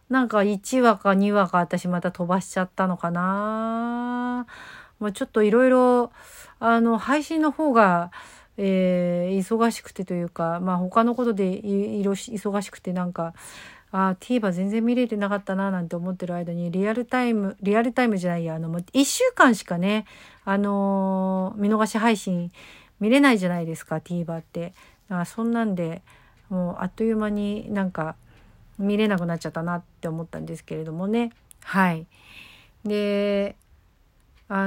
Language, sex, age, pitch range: Japanese, female, 50-69, 180-230 Hz